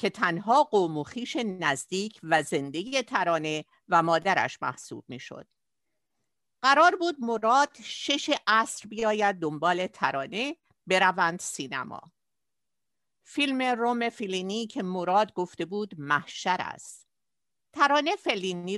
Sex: female